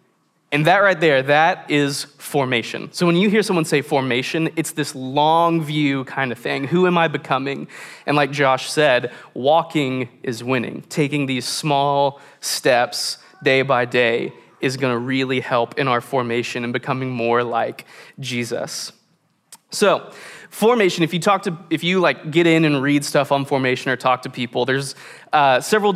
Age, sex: 20-39, male